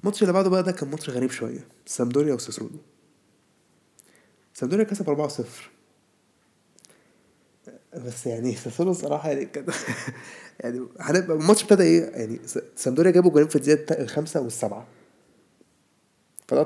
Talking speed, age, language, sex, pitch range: 110 wpm, 20-39, Arabic, male, 125-165 Hz